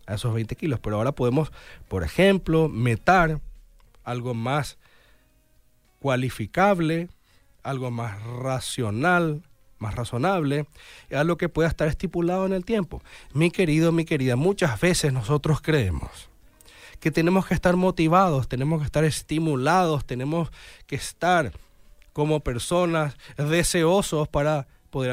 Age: 30-49